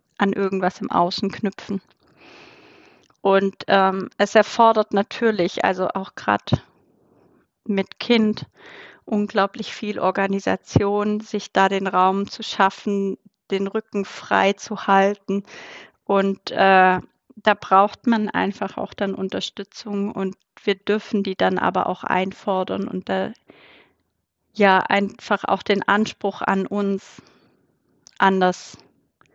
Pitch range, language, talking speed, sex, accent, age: 190-210 Hz, German, 115 wpm, female, German, 30-49